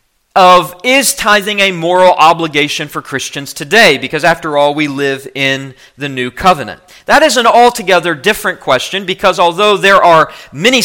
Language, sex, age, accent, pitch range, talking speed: English, male, 40-59, American, 150-190 Hz, 160 wpm